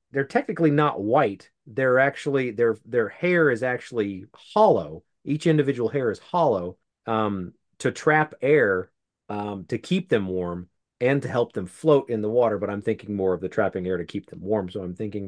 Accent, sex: American, male